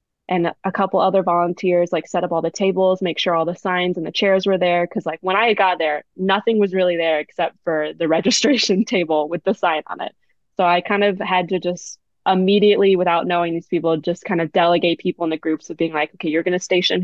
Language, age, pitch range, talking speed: English, 20-39, 165-190 Hz, 245 wpm